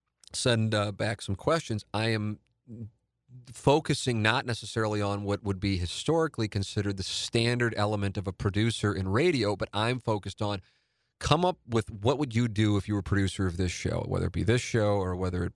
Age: 40-59